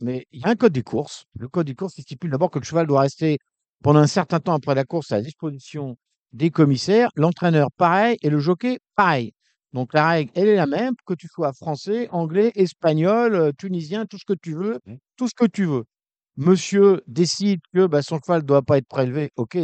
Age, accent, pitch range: 50-69, French, 135-185 Hz